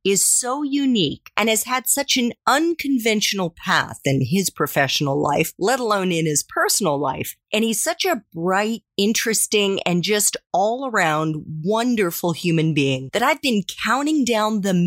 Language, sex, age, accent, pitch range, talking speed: English, female, 40-59, American, 165-240 Hz, 155 wpm